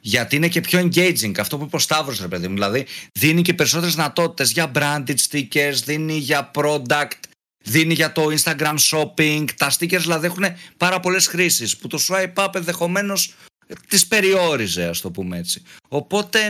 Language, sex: Greek, male